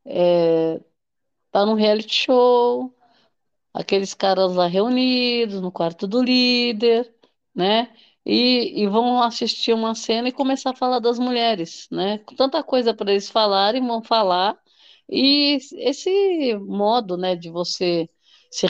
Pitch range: 185-250 Hz